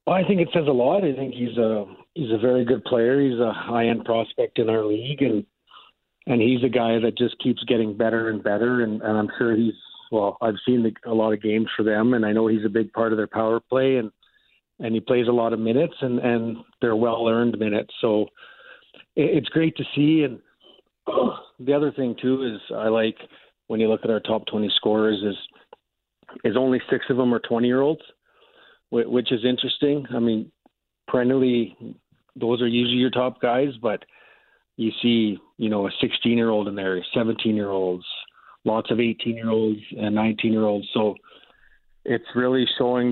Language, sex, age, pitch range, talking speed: English, male, 50-69, 110-125 Hz, 200 wpm